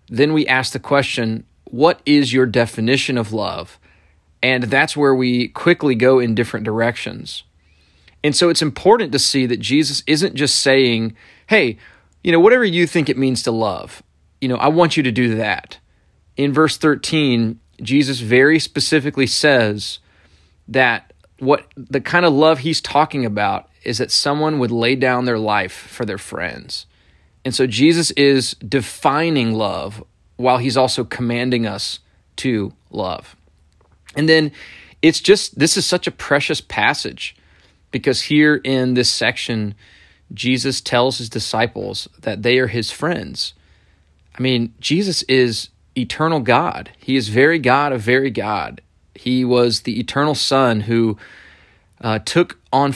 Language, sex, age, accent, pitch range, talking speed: English, male, 30-49, American, 105-140 Hz, 155 wpm